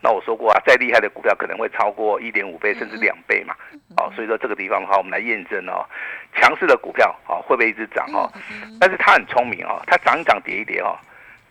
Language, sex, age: Chinese, male, 50-69